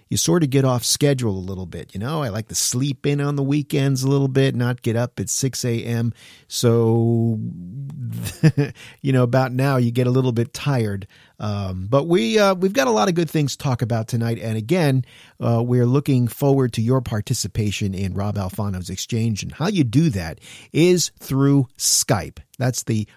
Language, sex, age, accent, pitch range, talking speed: English, male, 50-69, American, 115-150 Hz, 200 wpm